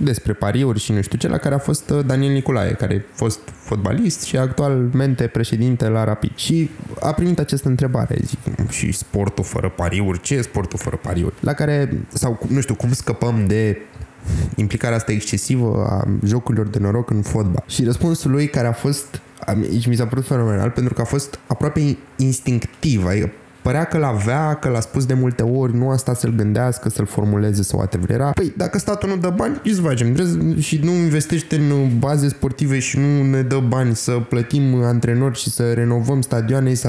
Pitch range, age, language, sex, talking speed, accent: 115-145 Hz, 20-39, Romanian, male, 195 wpm, native